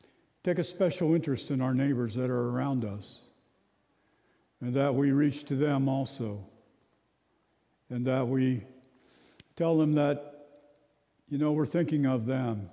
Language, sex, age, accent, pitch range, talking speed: English, male, 50-69, American, 120-140 Hz, 140 wpm